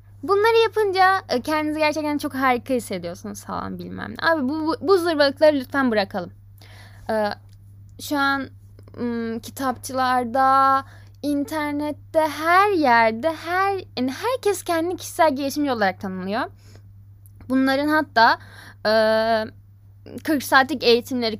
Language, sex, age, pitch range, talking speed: Turkish, female, 10-29, 195-285 Hz, 110 wpm